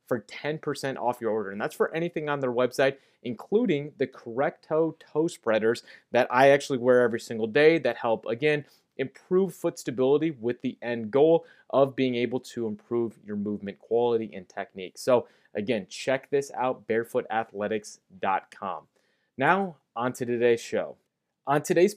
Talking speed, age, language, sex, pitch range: 155 wpm, 30-49, English, male, 115-155 Hz